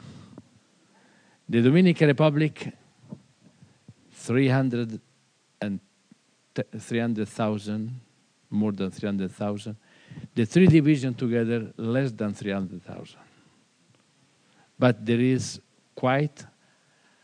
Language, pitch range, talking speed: English, 105-130 Hz, 65 wpm